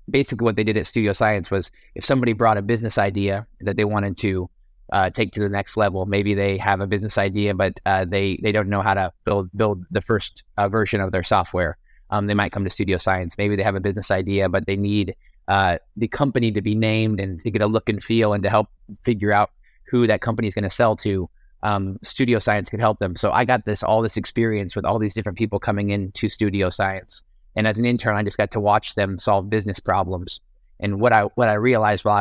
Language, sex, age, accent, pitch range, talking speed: English, male, 20-39, American, 100-110 Hz, 245 wpm